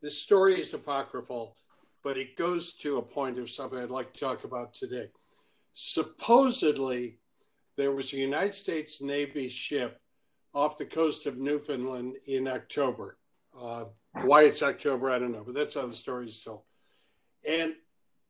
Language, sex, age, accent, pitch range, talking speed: English, male, 60-79, American, 140-190 Hz, 155 wpm